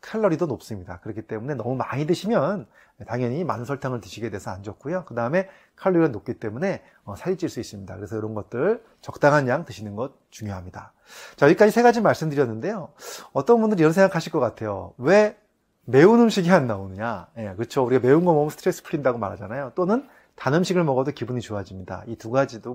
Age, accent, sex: 30-49, native, male